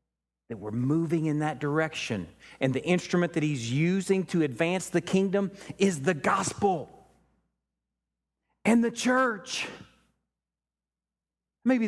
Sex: male